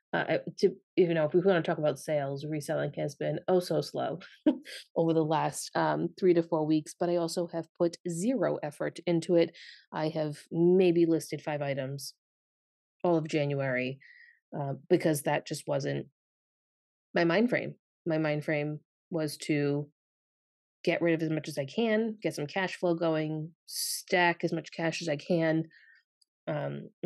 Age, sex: 30-49, female